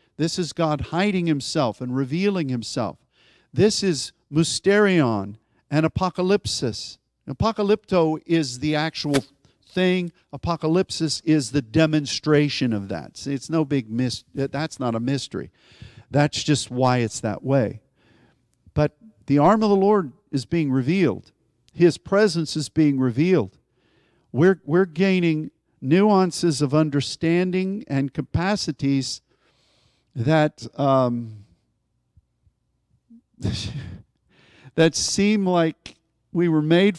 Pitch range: 130-170 Hz